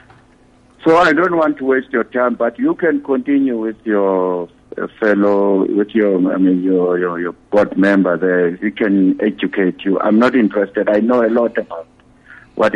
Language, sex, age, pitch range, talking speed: English, male, 60-79, 95-125 Hz, 185 wpm